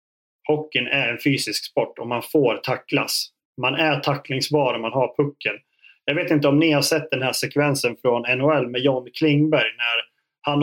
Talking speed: 185 wpm